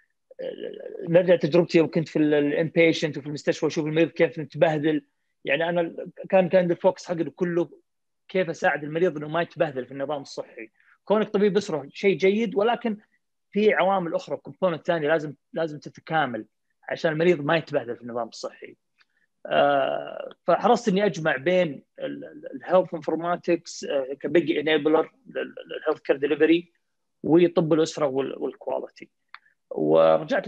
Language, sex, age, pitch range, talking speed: Arabic, male, 30-49, 145-185 Hz, 125 wpm